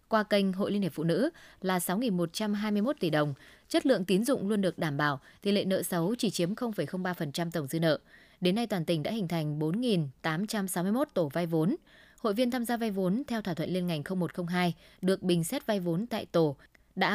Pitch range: 170-215 Hz